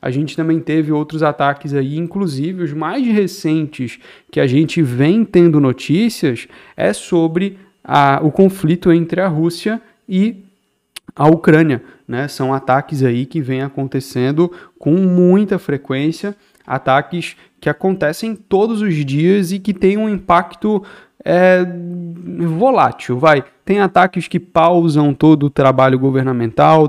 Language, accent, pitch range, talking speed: Portuguese, Brazilian, 130-175 Hz, 130 wpm